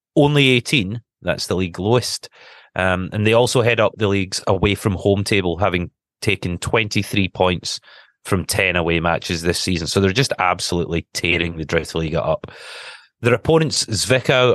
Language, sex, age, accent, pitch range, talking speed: English, male, 30-49, British, 90-115 Hz, 165 wpm